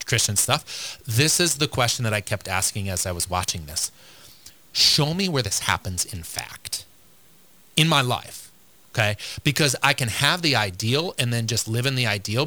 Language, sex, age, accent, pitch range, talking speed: English, male, 30-49, American, 105-145 Hz, 190 wpm